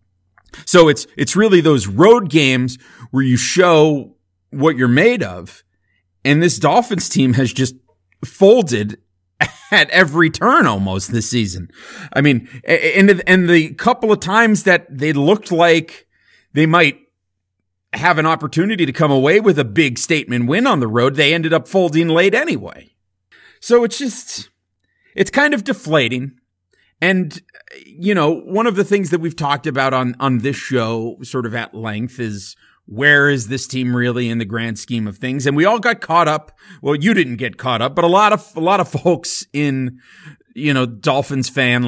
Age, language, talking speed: 30-49, English, 180 wpm